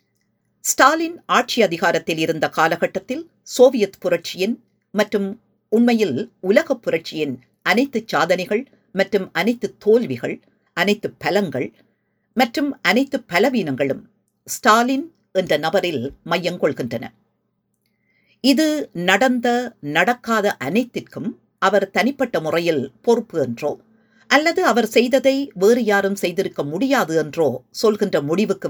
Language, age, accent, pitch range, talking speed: Tamil, 50-69, native, 175-245 Hz, 95 wpm